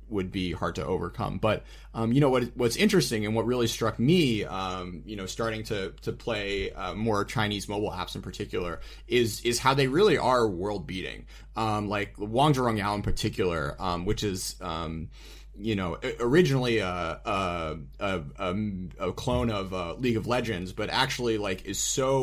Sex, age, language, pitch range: male, 30-49, English, 95-120 Hz